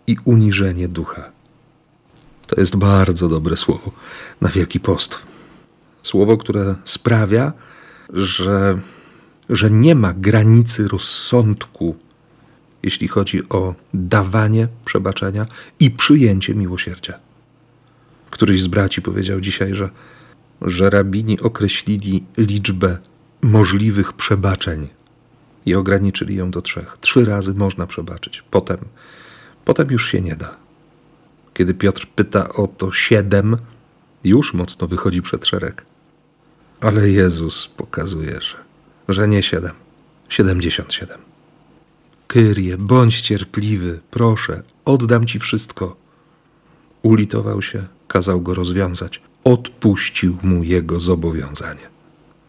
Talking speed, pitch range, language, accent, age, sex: 105 wpm, 95-115 Hz, Polish, native, 40-59, male